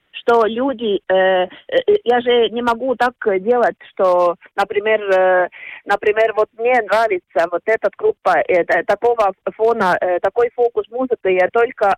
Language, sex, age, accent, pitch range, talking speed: Russian, female, 30-49, native, 185-255 Hz, 145 wpm